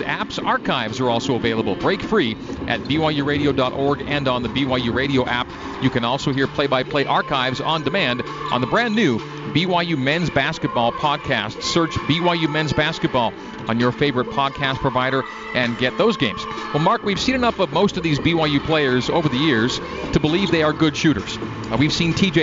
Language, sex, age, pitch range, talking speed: English, male, 40-59, 135-175 Hz, 180 wpm